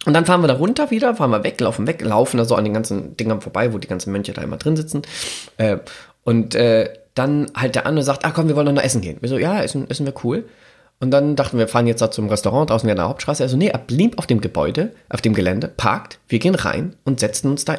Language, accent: German, German